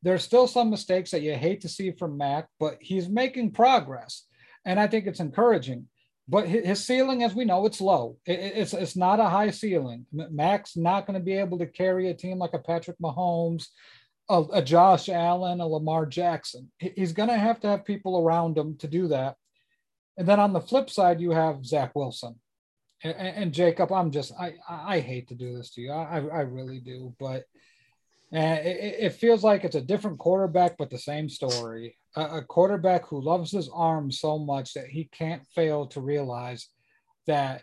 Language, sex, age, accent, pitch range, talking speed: English, male, 40-59, American, 145-190 Hz, 190 wpm